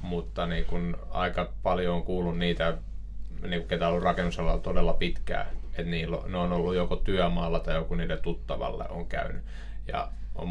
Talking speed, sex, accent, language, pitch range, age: 165 wpm, male, native, Finnish, 85-90 Hz, 20-39